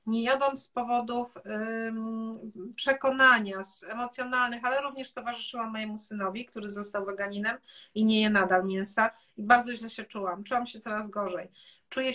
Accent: native